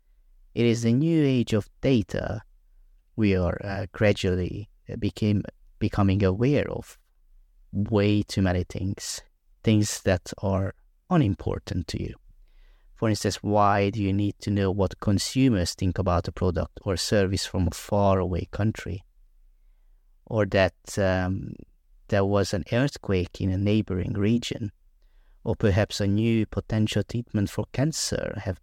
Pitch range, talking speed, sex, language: 95-110 Hz, 135 wpm, male, English